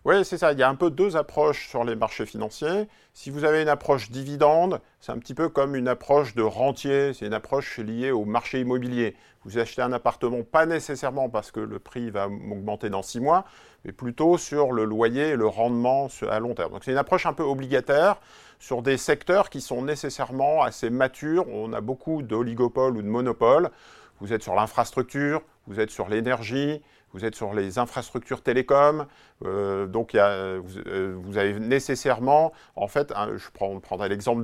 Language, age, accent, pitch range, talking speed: French, 40-59, French, 110-145 Hz, 195 wpm